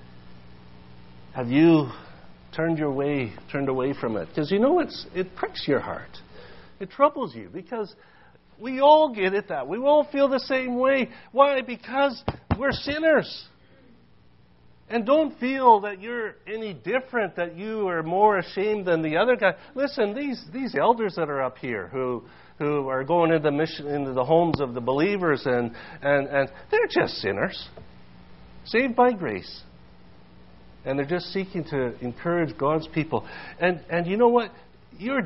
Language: English